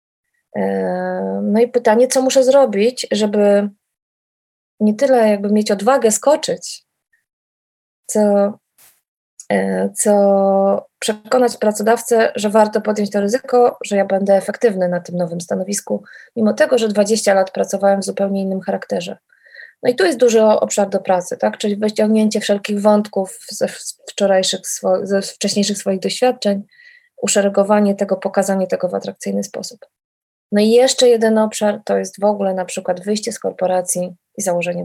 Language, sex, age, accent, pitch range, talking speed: Polish, female, 20-39, native, 185-225 Hz, 145 wpm